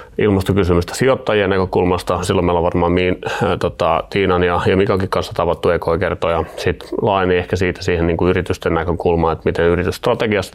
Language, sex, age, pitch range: Finnish, male, 30-49, 85-100 Hz